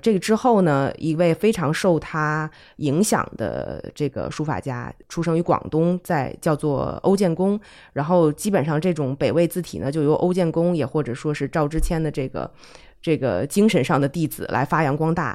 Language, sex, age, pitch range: Chinese, female, 20-39, 145-175 Hz